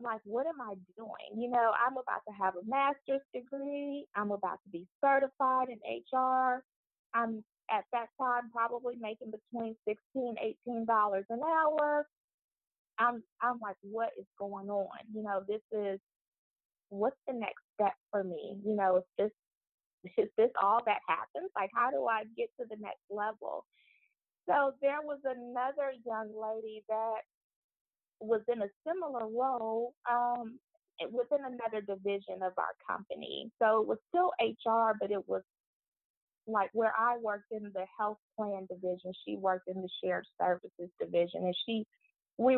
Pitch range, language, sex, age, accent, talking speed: 205-255 Hz, English, female, 20-39, American, 160 wpm